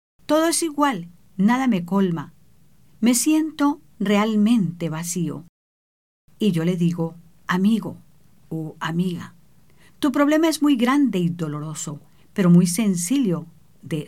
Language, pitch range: English, 165-225 Hz